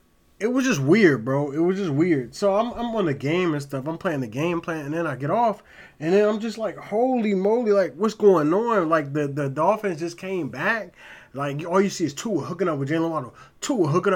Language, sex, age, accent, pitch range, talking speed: English, male, 20-39, American, 140-185 Hz, 245 wpm